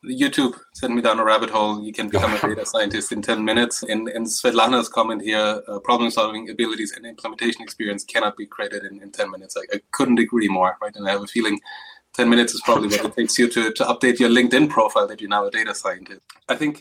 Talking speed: 235 wpm